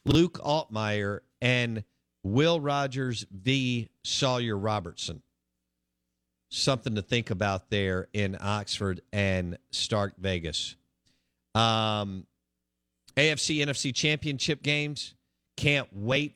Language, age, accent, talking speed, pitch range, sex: English, 50-69, American, 90 wpm, 100-130 Hz, male